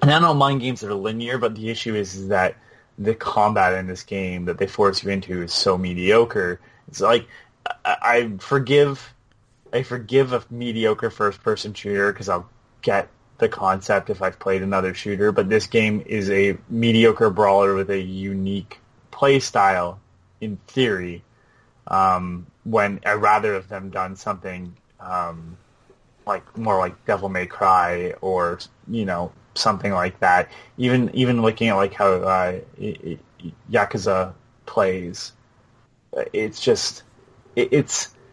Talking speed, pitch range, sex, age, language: 145 wpm, 95-120 Hz, male, 20-39, English